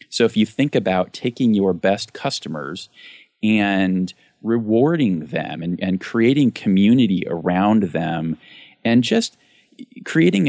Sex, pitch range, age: male, 85-120 Hz, 30-49